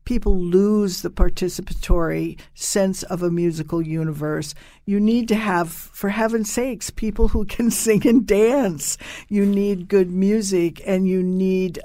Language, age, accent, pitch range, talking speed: English, 60-79, American, 165-200 Hz, 145 wpm